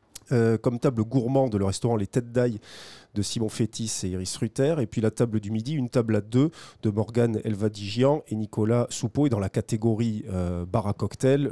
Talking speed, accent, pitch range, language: 210 wpm, French, 110-135 Hz, French